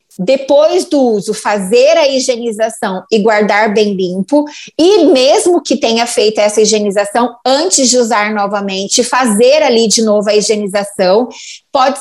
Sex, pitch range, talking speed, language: female, 225-270 Hz, 140 wpm, Portuguese